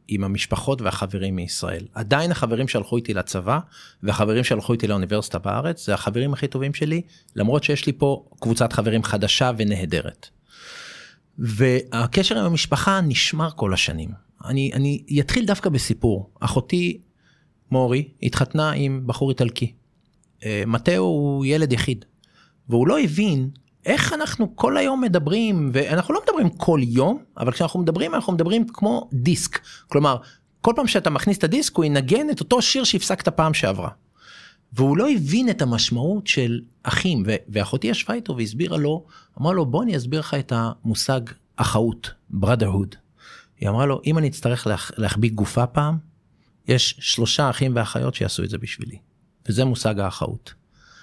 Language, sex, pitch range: Hebrew, male, 115-165 Hz